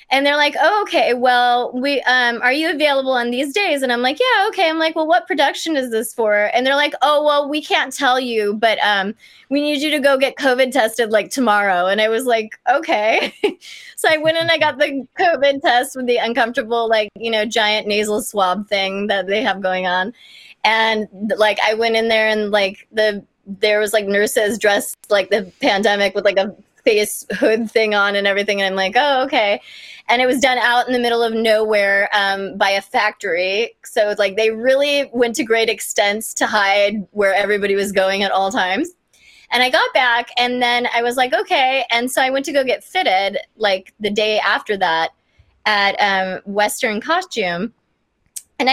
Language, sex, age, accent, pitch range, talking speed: English, female, 20-39, American, 200-260 Hz, 205 wpm